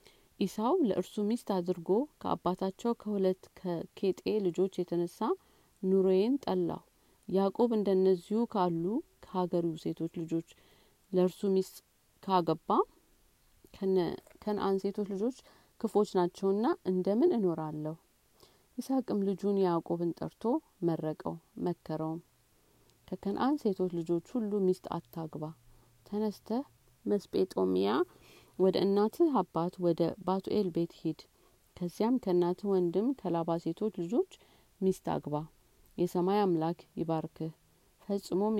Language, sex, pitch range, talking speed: Amharic, female, 165-200 Hz, 90 wpm